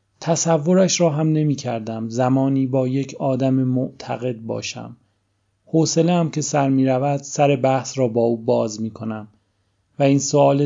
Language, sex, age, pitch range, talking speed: Persian, male, 30-49, 115-145 Hz, 160 wpm